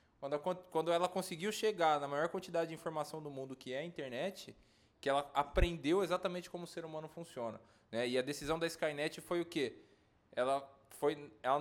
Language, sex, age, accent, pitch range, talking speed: Portuguese, male, 20-39, Brazilian, 125-165 Hz, 180 wpm